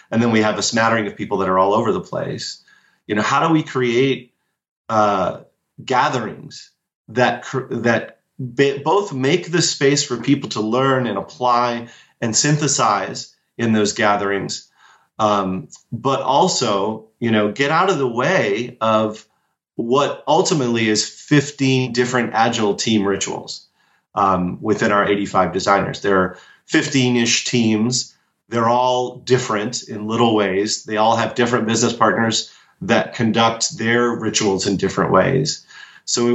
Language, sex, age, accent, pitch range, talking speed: English, male, 30-49, American, 110-130 Hz, 145 wpm